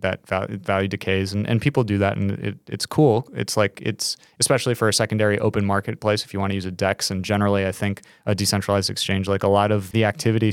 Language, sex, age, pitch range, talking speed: English, male, 20-39, 100-115 Hz, 235 wpm